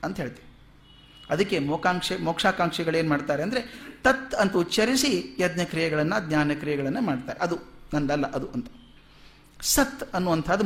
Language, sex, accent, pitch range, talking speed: Kannada, male, native, 155-225 Hz, 120 wpm